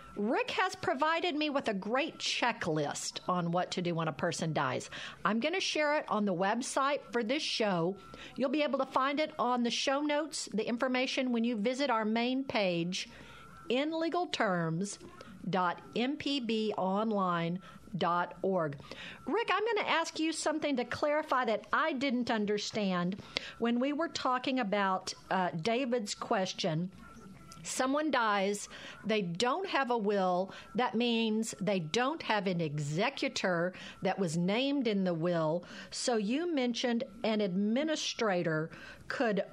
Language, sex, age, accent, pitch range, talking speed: English, female, 50-69, American, 190-270 Hz, 140 wpm